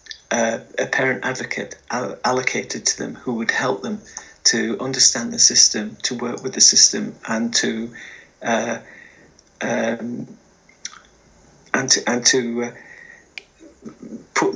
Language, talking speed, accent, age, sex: English, 120 wpm, British, 40-59, male